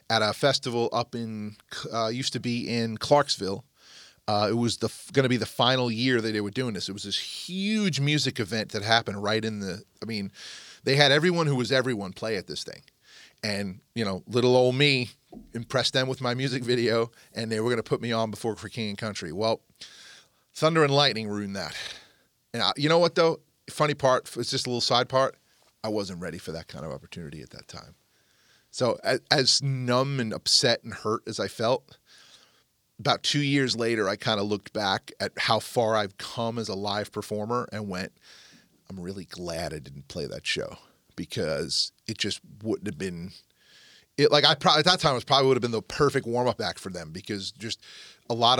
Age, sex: 30-49, male